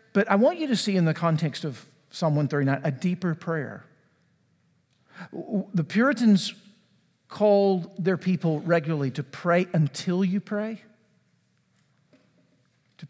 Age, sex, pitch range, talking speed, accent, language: 50-69, male, 155-195 Hz, 125 wpm, American, English